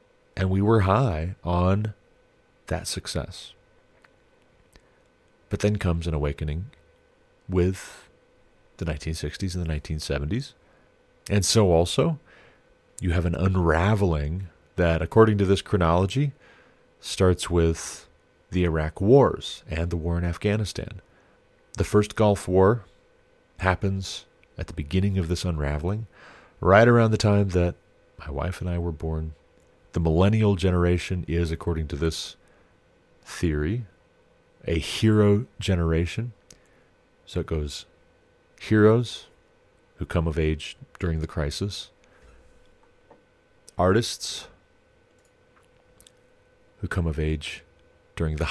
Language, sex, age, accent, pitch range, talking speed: English, male, 30-49, American, 80-100 Hz, 115 wpm